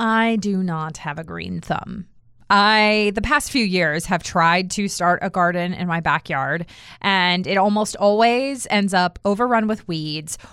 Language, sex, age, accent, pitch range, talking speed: English, female, 20-39, American, 175-225 Hz, 170 wpm